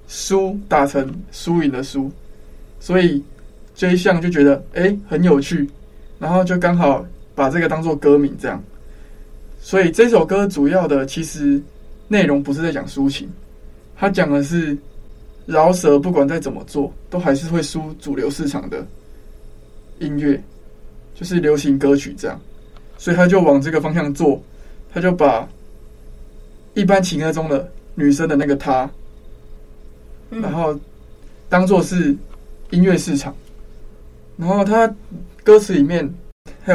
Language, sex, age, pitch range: Chinese, male, 20-39, 140-180 Hz